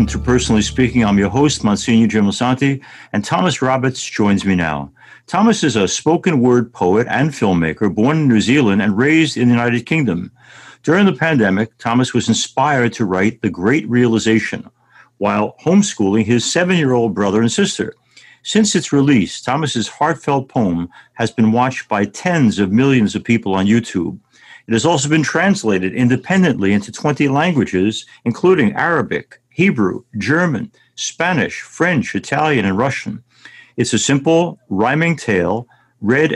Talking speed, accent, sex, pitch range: 150 wpm, American, male, 110-145 Hz